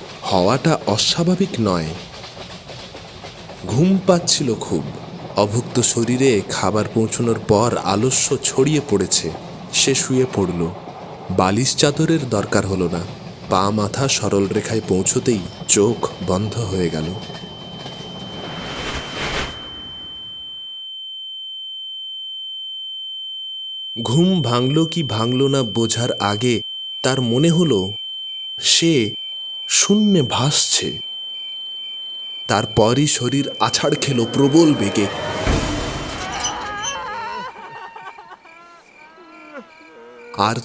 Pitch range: 110-150 Hz